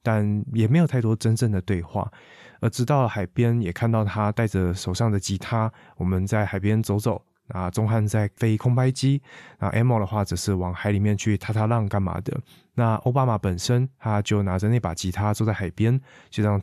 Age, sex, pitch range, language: 20-39, male, 100-125 Hz, Chinese